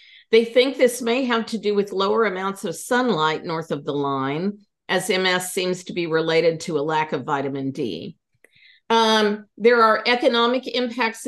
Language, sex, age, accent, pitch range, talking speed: English, female, 50-69, American, 180-255 Hz, 175 wpm